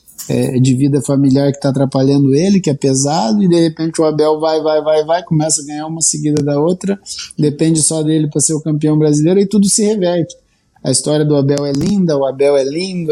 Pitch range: 140-175 Hz